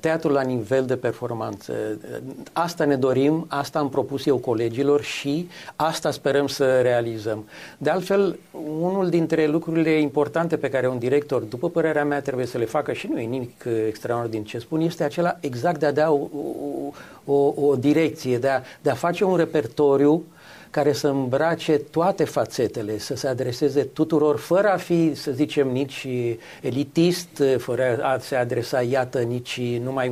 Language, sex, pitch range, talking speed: Romanian, male, 120-155 Hz, 165 wpm